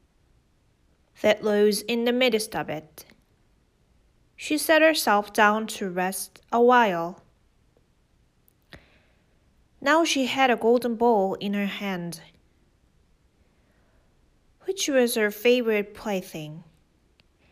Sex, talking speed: female, 100 wpm